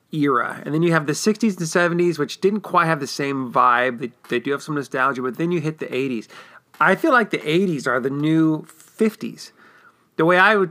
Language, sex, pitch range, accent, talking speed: English, male, 140-175 Hz, American, 230 wpm